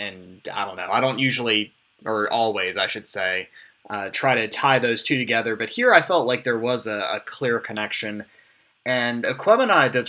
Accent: American